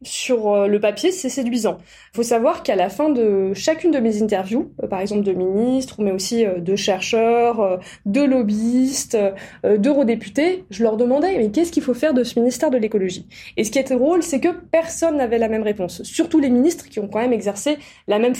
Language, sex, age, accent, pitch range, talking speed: French, female, 20-39, French, 225-300 Hz, 210 wpm